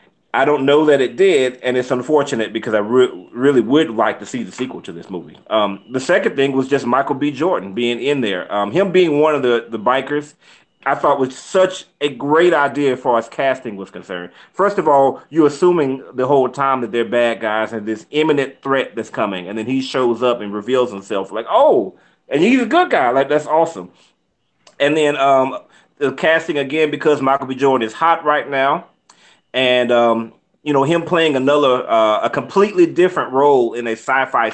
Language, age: English, 30-49